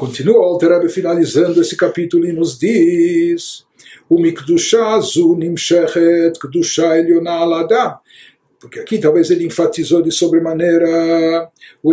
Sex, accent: male, Brazilian